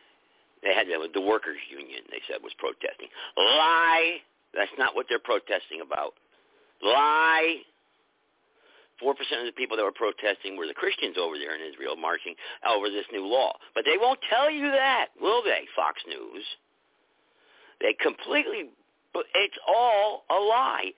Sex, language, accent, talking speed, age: male, English, American, 150 wpm, 50-69